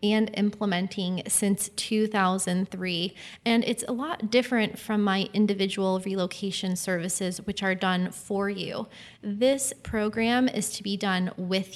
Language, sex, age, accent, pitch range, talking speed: English, female, 20-39, American, 195-220 Hz, 135 wpm